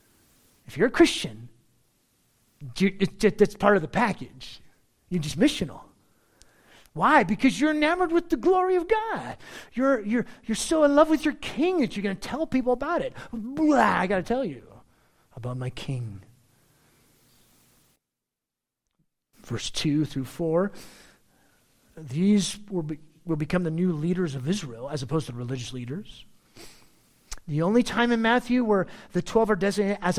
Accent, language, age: American, English, 40-59